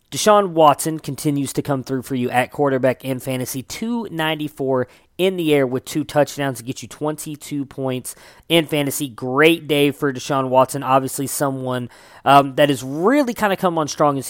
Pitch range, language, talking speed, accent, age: 130-150 Hz, English, 180 wpm, American, 20-39